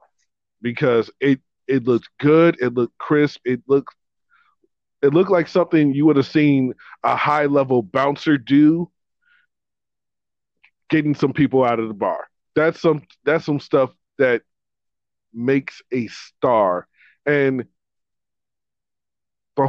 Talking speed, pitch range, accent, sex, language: 125 wpm, 125-155 Hz, American, male, English